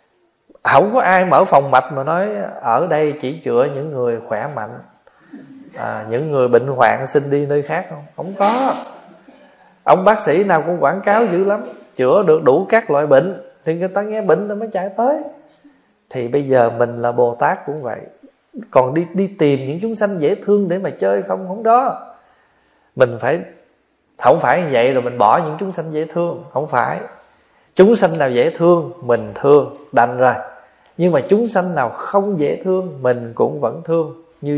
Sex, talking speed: male, 200 wpm